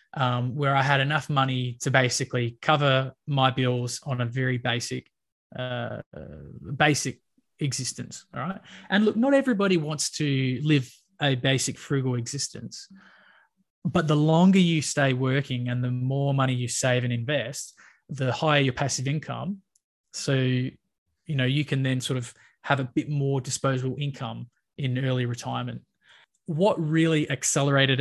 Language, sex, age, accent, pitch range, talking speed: English, male, 20-39, Australian, 125-150 Hz, 150 wpm